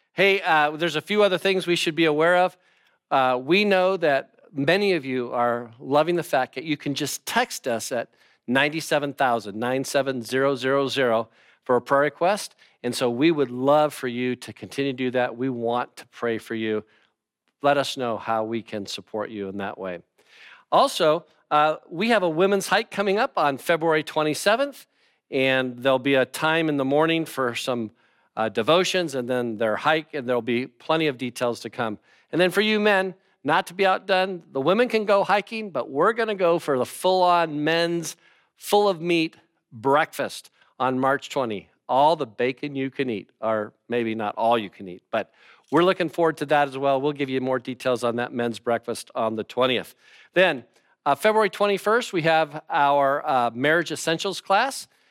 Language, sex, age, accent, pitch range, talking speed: English, male, 50-69, American, 125-175 Hz, 190 wpm